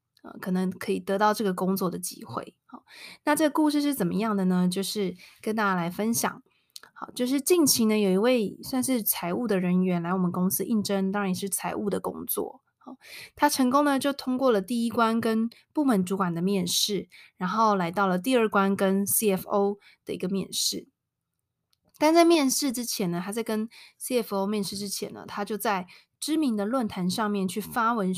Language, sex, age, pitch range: Chinese, female, 20-39, 195-245 Hz